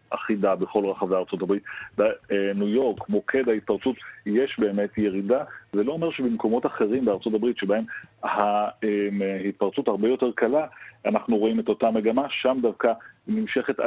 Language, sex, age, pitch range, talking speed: Hebrew, male, 40-59, 105-130 Hz, 140 wpm